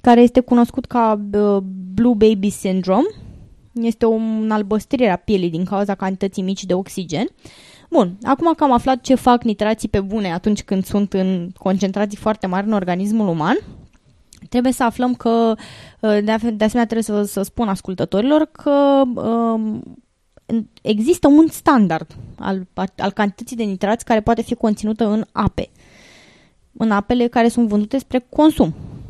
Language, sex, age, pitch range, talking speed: Romanian, female, 20-39, 205-250 Hz, 145 wpm